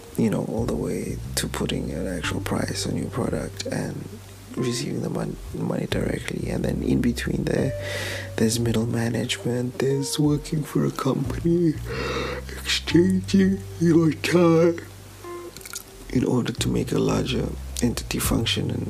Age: 30-49